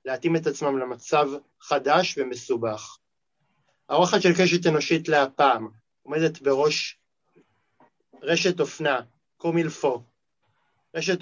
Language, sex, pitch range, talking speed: Hebrew, male, 140-170 Hz, 90 wpm